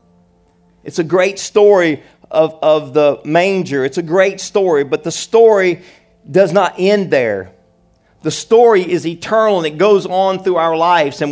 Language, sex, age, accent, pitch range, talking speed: English, male, 50-69, American, 115-160 Hz, 165 wpm